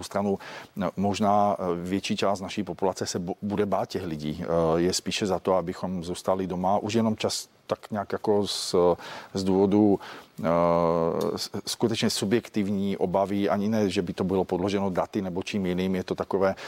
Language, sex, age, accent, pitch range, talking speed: Czech, male, 40-59, native, 90-100 Hz, 160 wpm